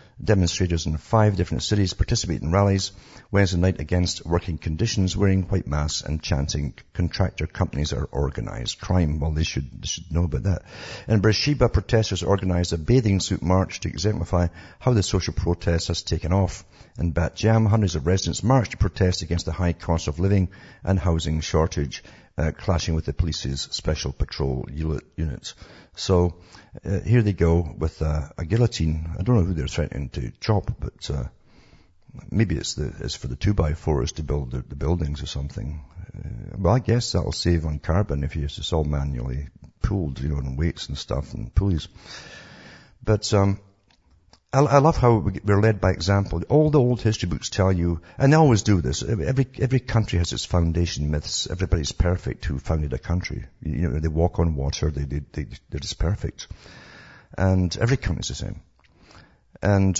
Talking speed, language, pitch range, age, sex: 180 wpm, English, 80-105 Hz, 60-79, male